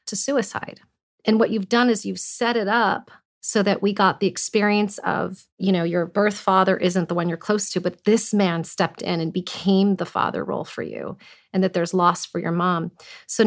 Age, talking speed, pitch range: 40-59, 220 wpm, 190-235 Hz